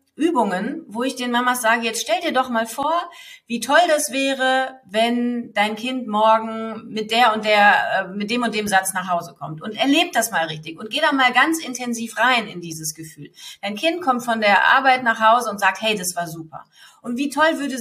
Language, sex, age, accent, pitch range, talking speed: German, female, 40-59, German, 200-265 Hz, 220 wpm